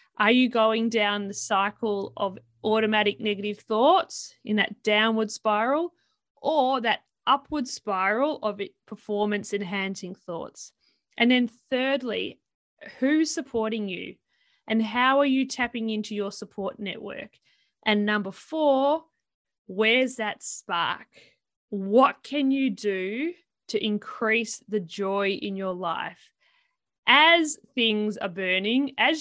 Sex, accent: female, Australian